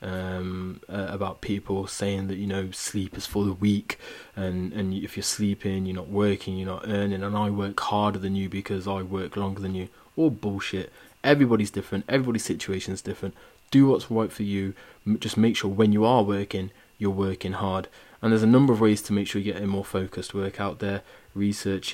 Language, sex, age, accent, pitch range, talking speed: English, male, 20-39, British, 95-110 Hz, 210 wpm